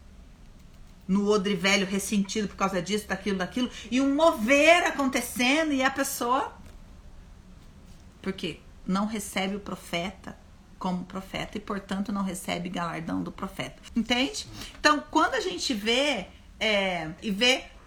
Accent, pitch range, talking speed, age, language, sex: Brazilian, 200-295 Hz, 130 wpm, 50-69, Portuguese, female